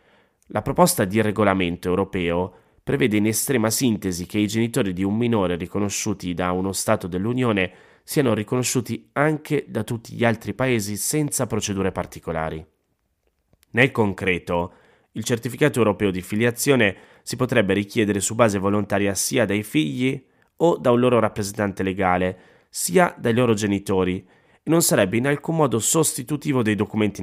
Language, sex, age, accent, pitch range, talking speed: Italian, male, 30-49, native, 95-115 Hz, 145 wpm